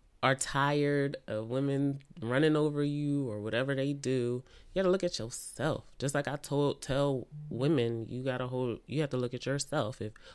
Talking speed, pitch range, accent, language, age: 185 wpm, 120-145 Hz, American, English, 20-39